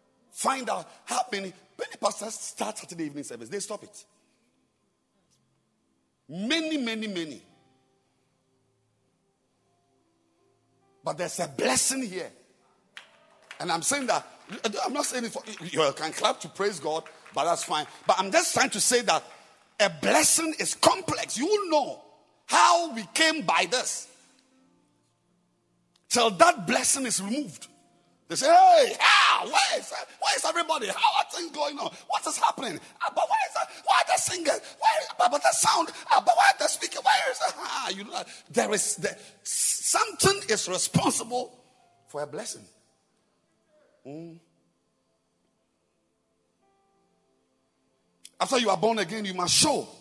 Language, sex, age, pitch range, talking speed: English, male, 50-69, 190-305 Hz, 140 wpm